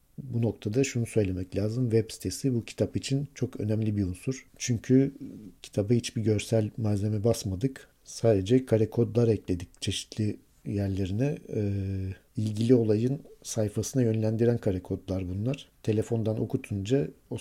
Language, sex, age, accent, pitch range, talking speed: Turkish, male, 50-69, native, 105-125 Hz, 130 wpm